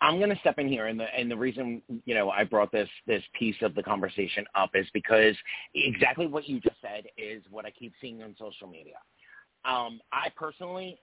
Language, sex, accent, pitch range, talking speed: English, male, American, 110-145 Hz, 210 wpm